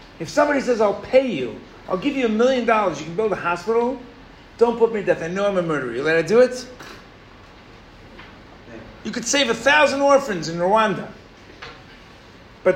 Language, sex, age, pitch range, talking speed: English, male, 50-69, 180-250 Hz, 195 wpm